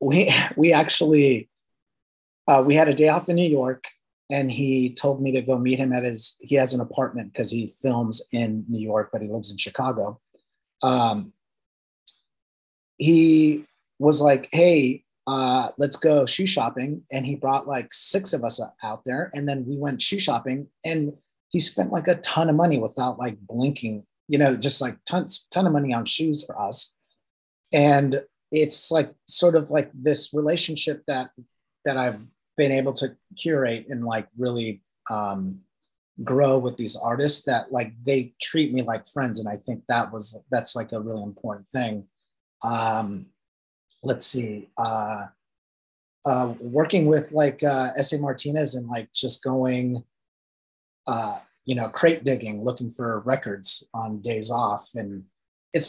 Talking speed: 165 wpm